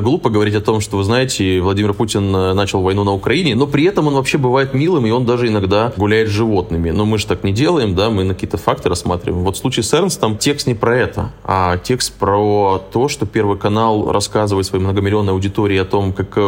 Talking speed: 225 wpm